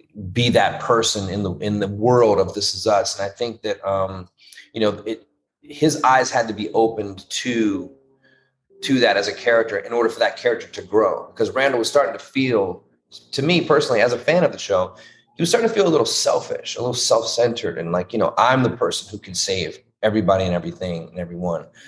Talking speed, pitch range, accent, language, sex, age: 220 wpm, 95-120 Hz, American, English, male, 30-49